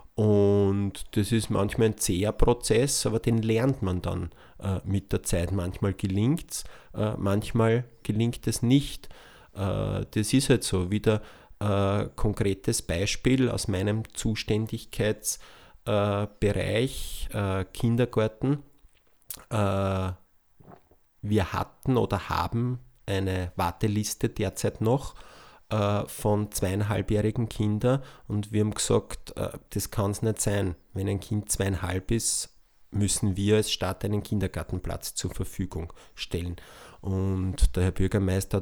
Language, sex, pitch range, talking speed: German, male, 95-110 Hz, 120 wpm